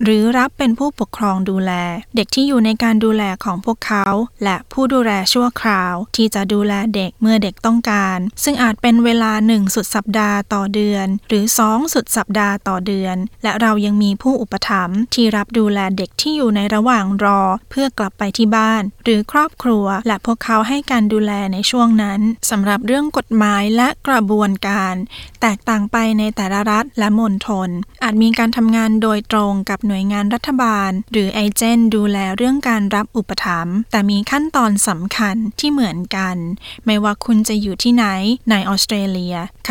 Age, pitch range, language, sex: 20-39, 205-235 Hz, Thai, female